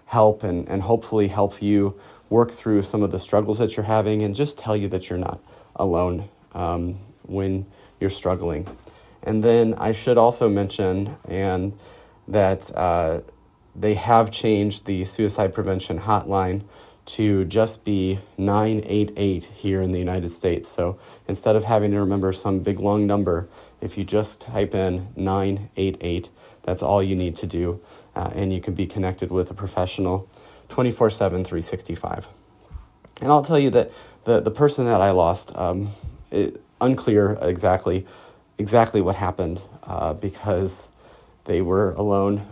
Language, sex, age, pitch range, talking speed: English, male, 30-49, 95-105 Hz, 150 wpm